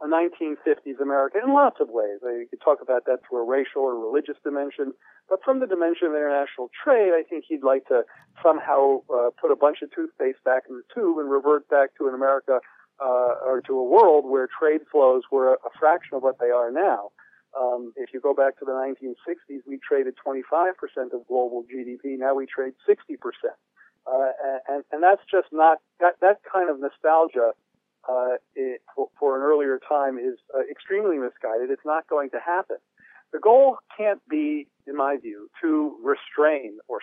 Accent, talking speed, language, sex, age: American, 190 wpm, English, male, 50-69